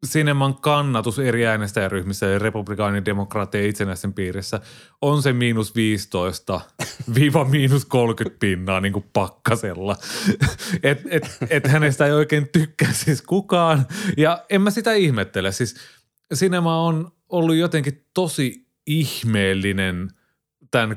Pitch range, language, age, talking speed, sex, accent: 95-125 Hz, Finnish, 30-49, 115 wpm, male, native